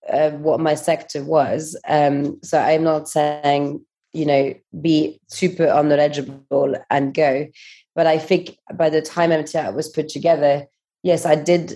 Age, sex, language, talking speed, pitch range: 30-49, female, English, 155 wpm, 145-165 Hz